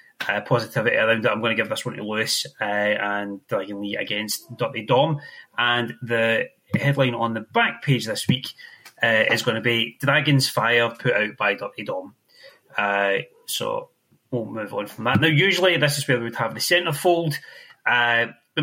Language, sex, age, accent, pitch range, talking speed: English, male, 30-49, British, 115-150 Hz, 190 wpm